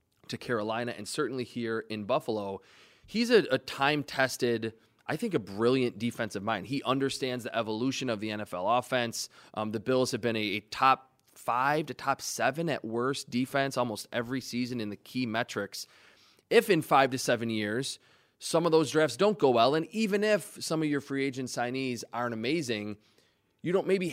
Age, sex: 20-39, male